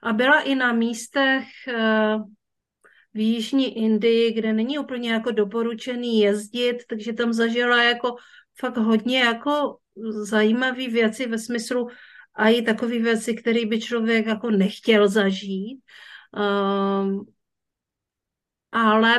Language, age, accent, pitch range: Czech, 50-69, native, 215-240 Hz